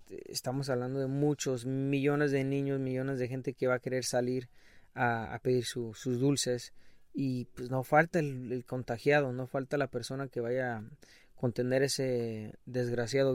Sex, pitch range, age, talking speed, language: male, 120-140 Hz, 20-39, 170 wpm, English